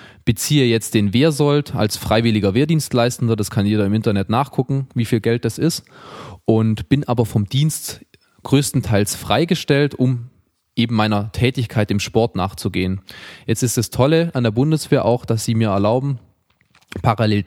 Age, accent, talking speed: 20-39, German, 155 wpm